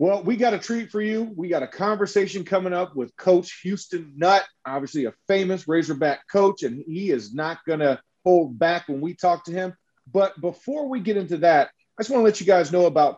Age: 40-59